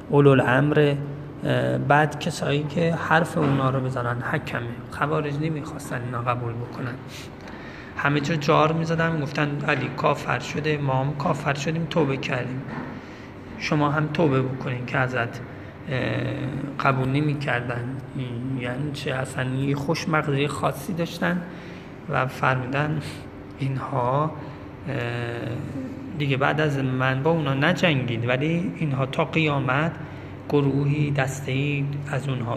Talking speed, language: 115 wpm, Persian